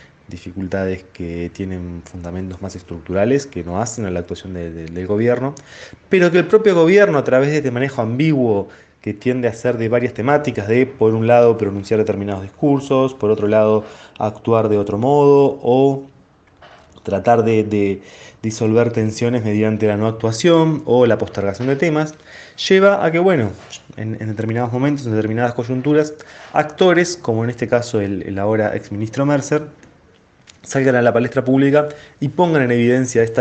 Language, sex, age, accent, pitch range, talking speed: Spanish, male, 20-39, Argentinian, 105-135 Hz, 165 wpm